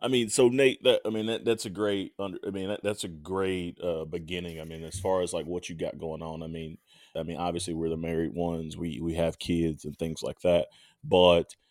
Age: 30-49